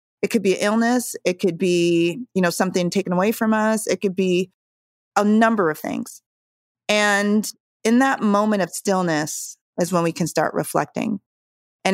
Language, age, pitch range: English, 30-49, 165-195 Hz